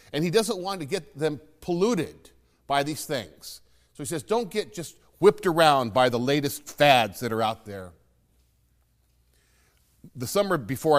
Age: 50-69